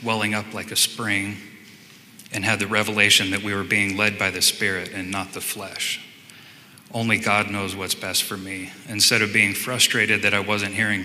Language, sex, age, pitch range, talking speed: English, male, 30-49, 95-110 Hz, 195 wpm